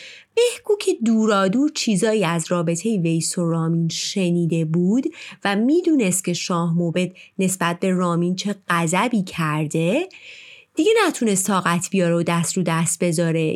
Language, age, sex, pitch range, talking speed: Persian, 30-49, female, 175-280 Hz, 135 wpm